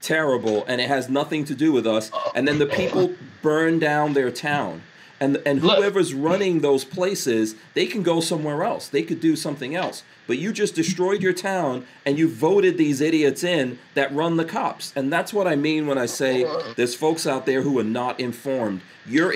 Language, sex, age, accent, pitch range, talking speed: English, male, 40-59, American, 120-165 Hz, 205 wpm